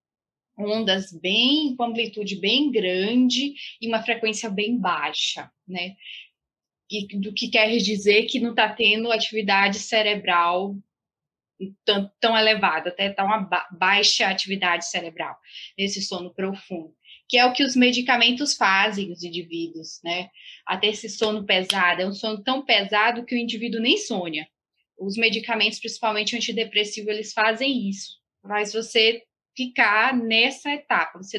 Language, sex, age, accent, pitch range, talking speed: Portuguese, female, 10-29, Brazilian, 200-270 Hz, 140 wpm